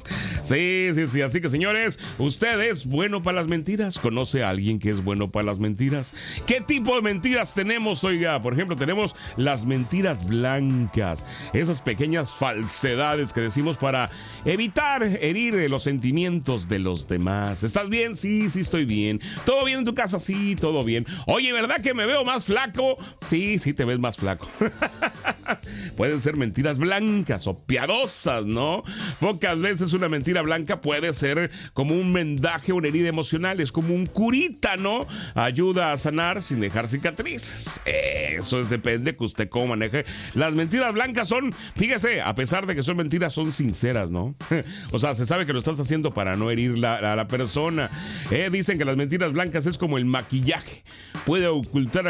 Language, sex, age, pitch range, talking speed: Spanish, male, 40-59, 125-190 Hz, 180 wpm